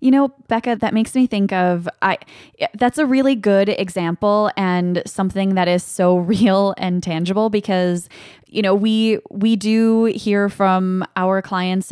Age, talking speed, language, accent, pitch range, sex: 20-39, 160 wpm, English, American, 175-200 Hz, female